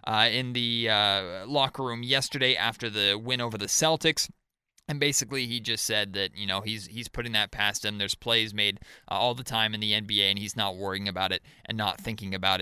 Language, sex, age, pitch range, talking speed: English, male, 20-39, 110-150 Hz, 225 wpm